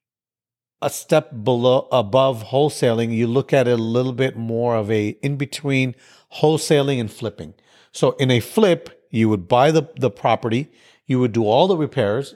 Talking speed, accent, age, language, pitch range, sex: 170 wpm, American, 40-59, English, 115-140 Hz, male